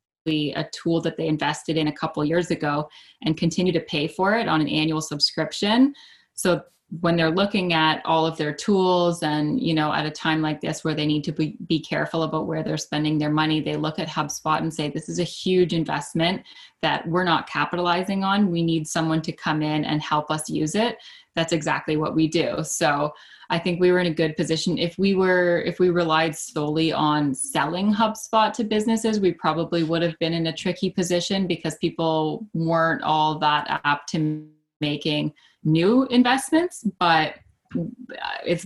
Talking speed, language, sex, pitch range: 190 wpm, English, female, 155-175 Hz